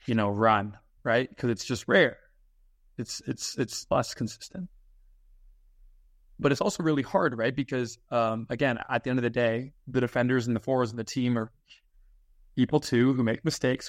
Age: 20-39